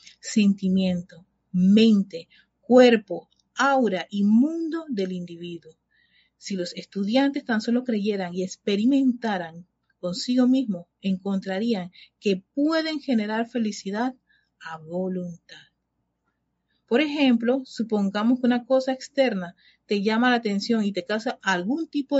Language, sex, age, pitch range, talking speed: Spanish, female, 40-59, 190-245 Hz, 110 wpm